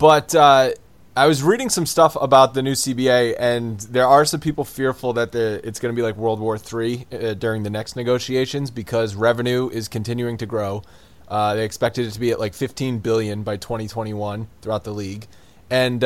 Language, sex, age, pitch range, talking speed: English, male, 20-39, 110-135 Hz, 200 wpm